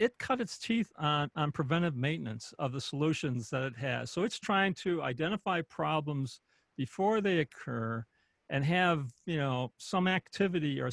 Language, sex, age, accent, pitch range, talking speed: English, male, 50-69, American, 140-185 Hz, 165 wpm